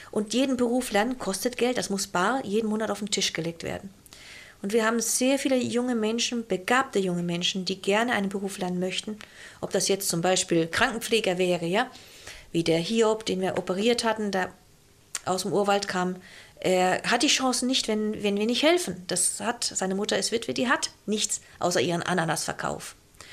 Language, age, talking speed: German, 50-69, 190 wpm